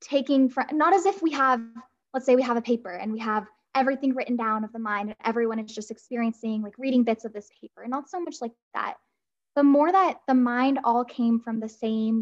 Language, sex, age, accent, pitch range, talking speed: English, female, 10-29, American, 225-260 Hz, 240 wpm